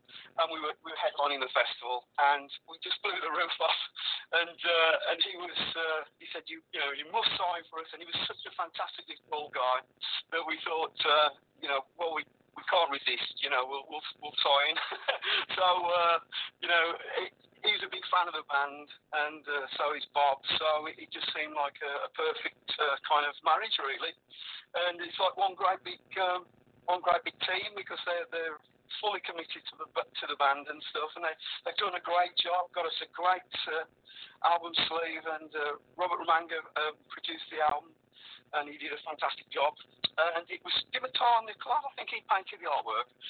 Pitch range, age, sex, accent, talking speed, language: 150-175 Hz, 50-69, male, British, 210 wpm, English